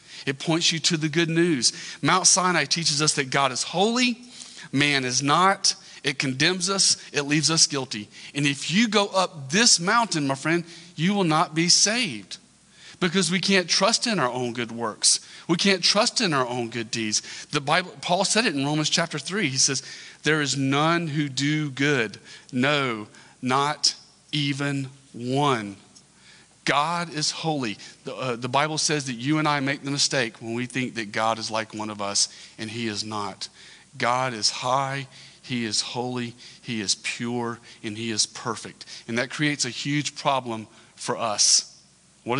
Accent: American